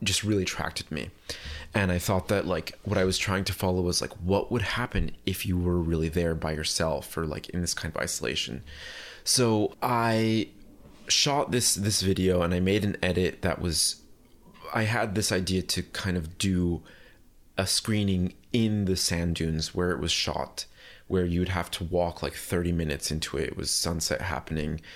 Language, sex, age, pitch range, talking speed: English, male, 20-39, 85-100 Hz, 190 wpm